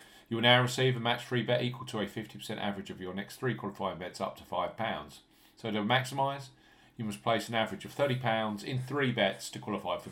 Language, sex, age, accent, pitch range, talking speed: English, male, 40-59, British, 105-125 Hz, 225 wpm